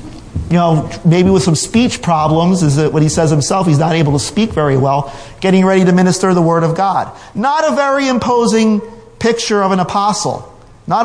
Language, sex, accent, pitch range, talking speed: English, male, American, 150-195 Hz, 200 wpm